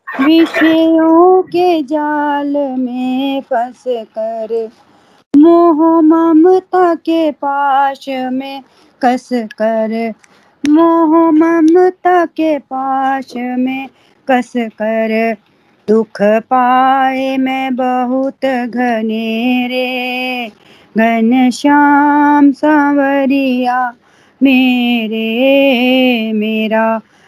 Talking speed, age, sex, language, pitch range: 65 wpm, 30-49, female, Hindi, 245-290 Hz